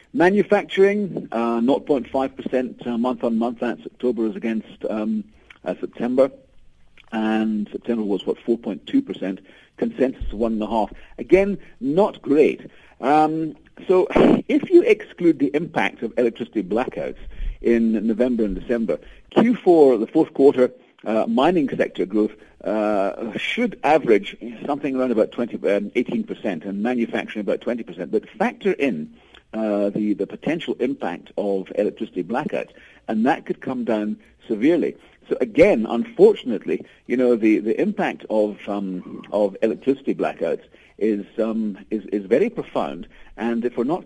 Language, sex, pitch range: English, male, 105-135 Hz